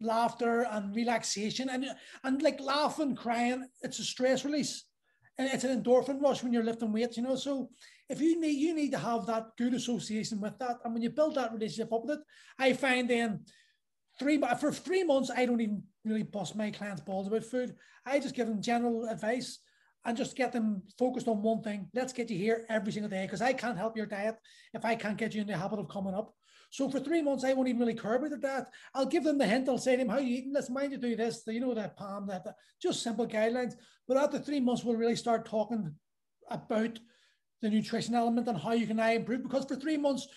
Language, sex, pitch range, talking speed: English, male, 225-265 Hz, 240 wpm